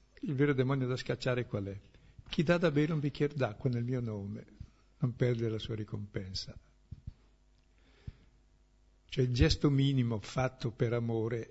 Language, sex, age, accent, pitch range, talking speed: Italian, male, 60-79, native, 110-135 Hz, 145 wpm